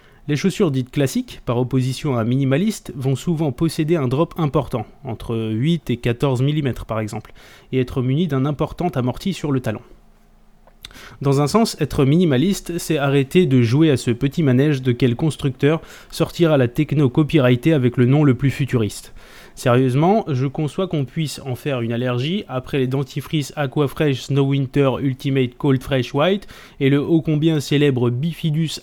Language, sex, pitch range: French, male, 130-160 Hz